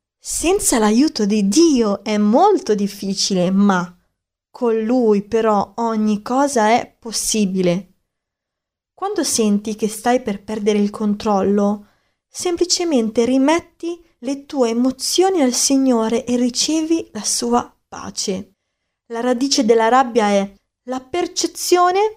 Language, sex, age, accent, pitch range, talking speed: Italian, female, 20-39, native, 220-285 Hz, 115 wpm